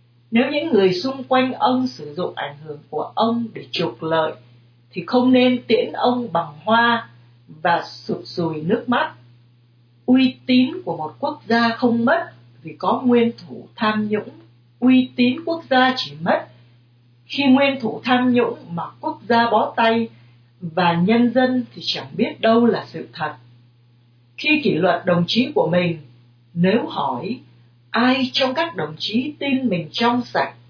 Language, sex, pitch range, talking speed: Vietnamese, female, 150-250 Hz, 165 wpm